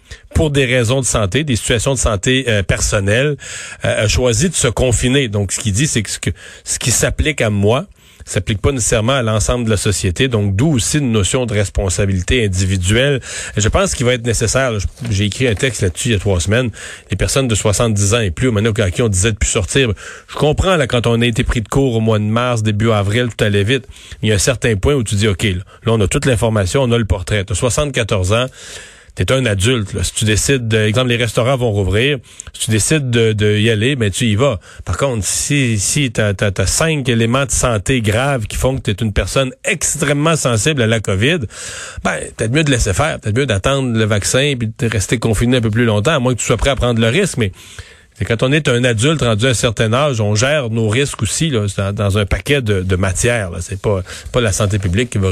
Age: 40-59